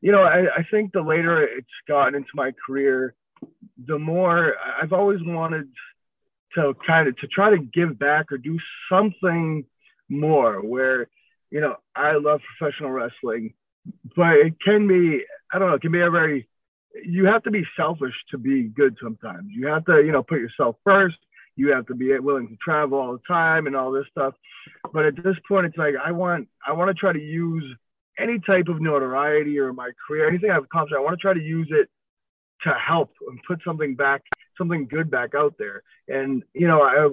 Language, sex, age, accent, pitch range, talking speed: English, male, 20-39, American, 135-175 Hz, 200 wpm